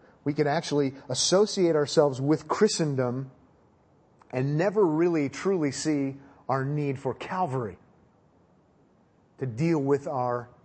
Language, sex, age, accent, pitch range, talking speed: English, male, 40-59, American, 120-145 Hz, 115 wpm